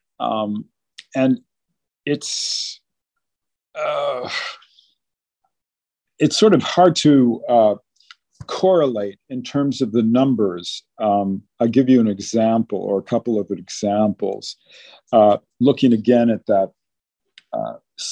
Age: 50-69